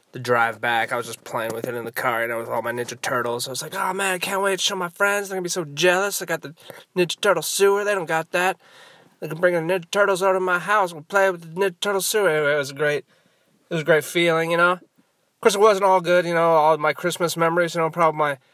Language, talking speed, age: English, 300 wpm, 20-39